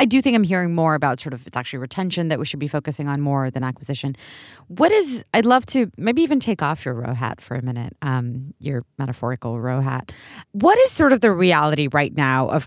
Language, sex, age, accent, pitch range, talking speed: English, female, 30-49, American, 140-190 Hz, 235 wpm